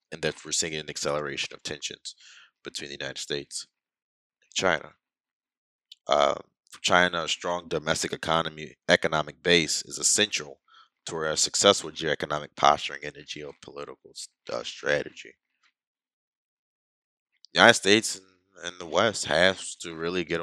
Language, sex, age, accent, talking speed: English, male, 20-39, American, 140 wpm